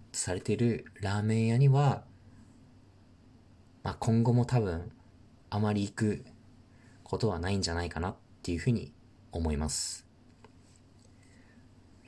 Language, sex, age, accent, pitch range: Japanese, male, 40-59, native, 90-120 Hz